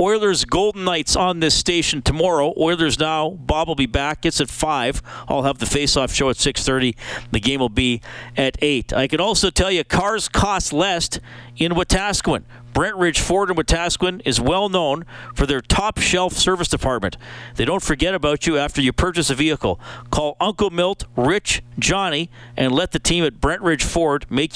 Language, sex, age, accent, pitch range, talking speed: English, male, 50-69, American, 125-170 Hz, 185 wpm